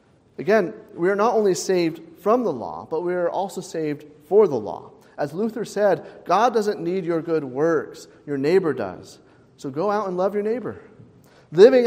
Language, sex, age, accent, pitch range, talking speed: English, male, 40-59, American, 175-245 Hz, 185 wpm